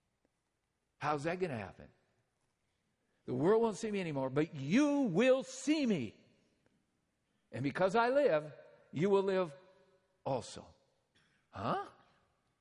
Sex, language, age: male, English, 60-79